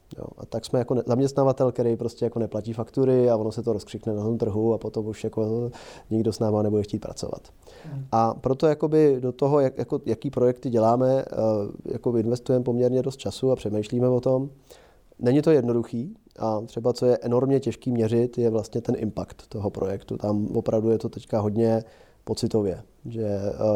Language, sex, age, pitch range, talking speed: Czech, male, 30-49, 110-125 Hz, 170 wpm